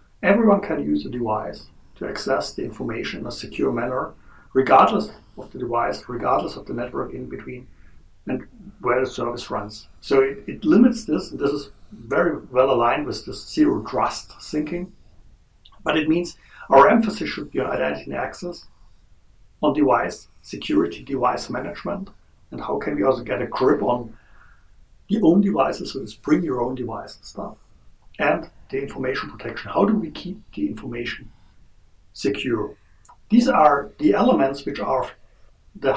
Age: 60-79